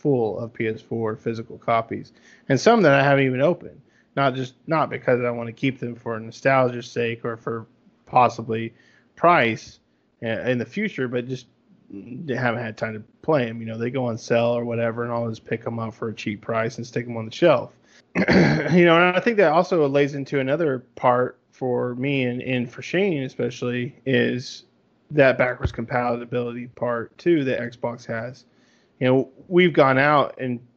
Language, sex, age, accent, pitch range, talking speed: English, male, 20-39, American, 115-135 Hz, 190 wpm